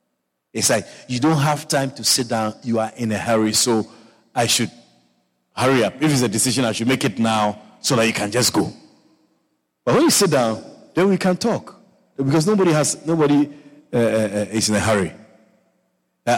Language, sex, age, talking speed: English, male, 50-69, 200 wpm